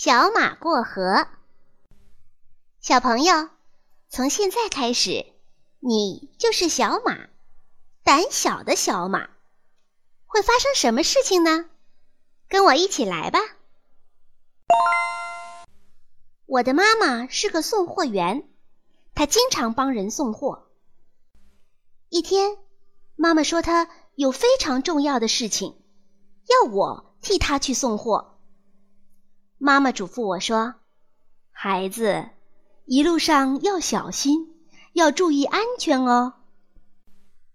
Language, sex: Chinese, male